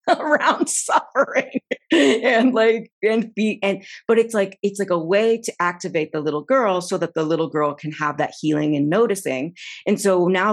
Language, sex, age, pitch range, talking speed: English, female, 30-49, 160-200 Hz, 190 wpm